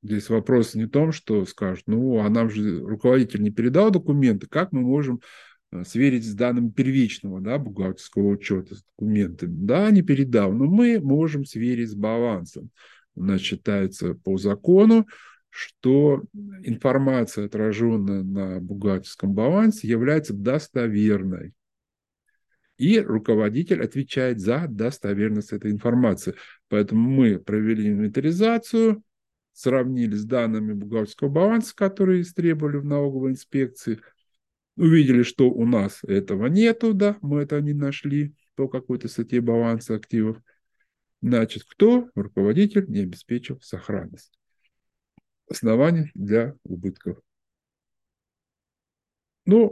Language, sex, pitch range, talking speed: Russian, male, 105-150 Hz, 115 wpm